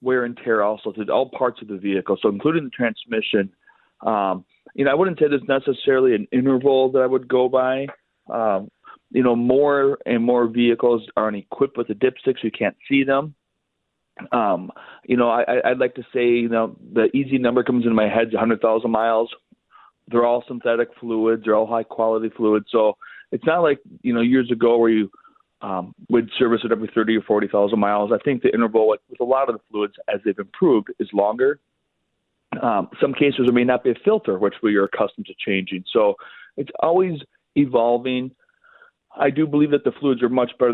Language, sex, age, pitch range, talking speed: English, male, 40-59, 110-130 Hz, 205 wpm